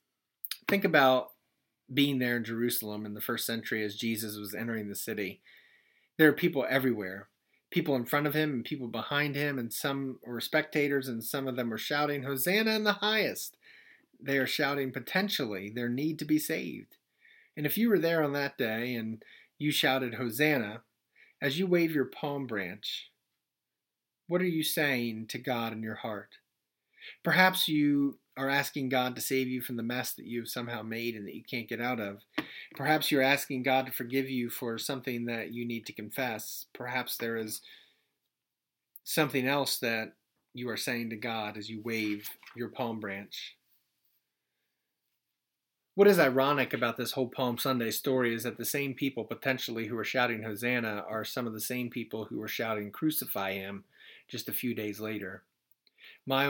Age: 30-49